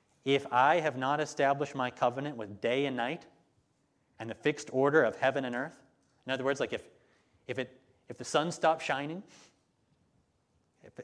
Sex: male